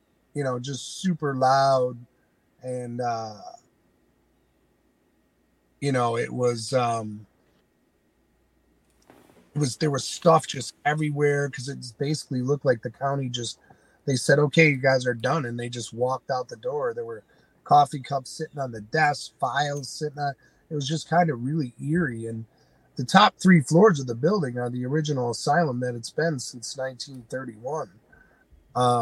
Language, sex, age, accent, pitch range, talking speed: English, male, 30-49, American, 125-150 Hz, 155 wpm